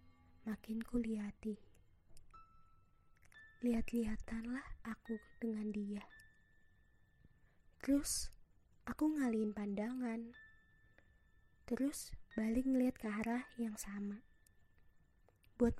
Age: 20-39